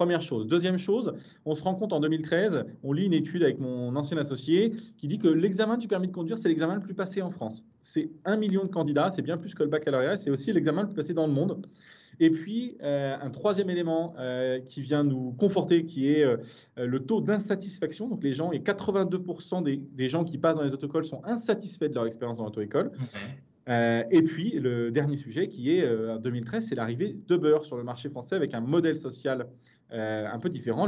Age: 20-39